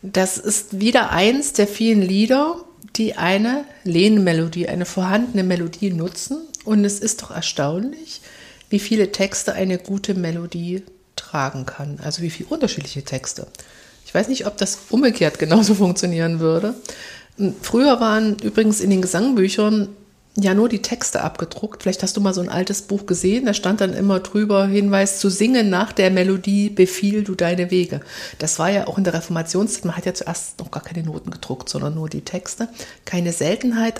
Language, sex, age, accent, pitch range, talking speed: German, female, 50-69, German, 180-215 Hz, 175 wpm